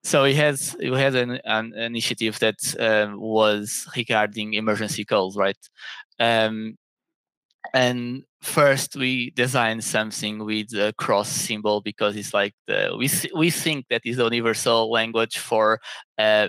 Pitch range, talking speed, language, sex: 110-125 Hz, 140 wpm, English, male